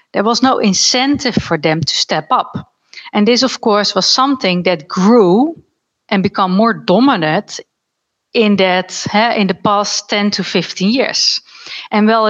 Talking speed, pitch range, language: 155 wpm, 180-230 Hz, English